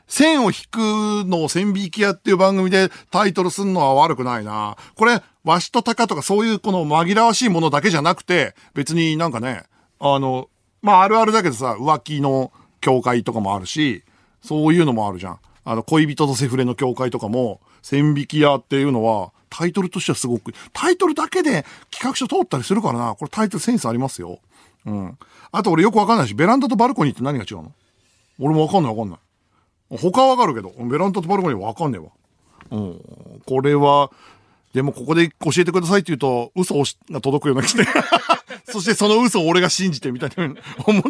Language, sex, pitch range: Japanese, male, 125-195 Hz